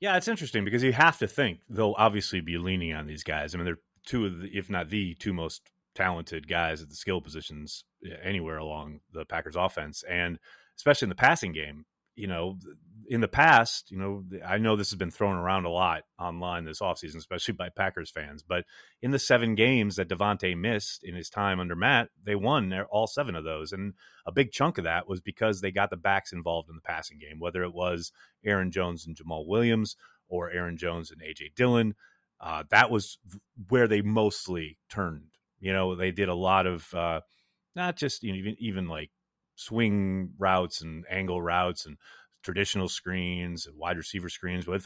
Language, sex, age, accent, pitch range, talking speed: English, male, 30-49, American, 85-110 Hz, 200 wpm